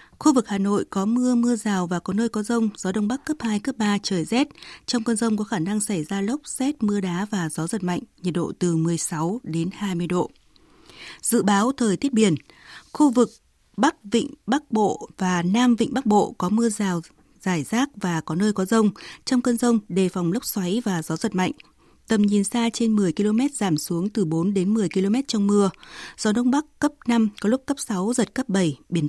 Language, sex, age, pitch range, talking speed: Vietnamese, female, 20-39, 190-235 Hz, 225 wpm